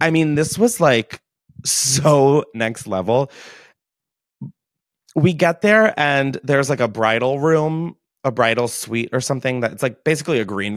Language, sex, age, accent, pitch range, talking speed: English, male, 30-49, American, 110-155 Hz, 155 wpm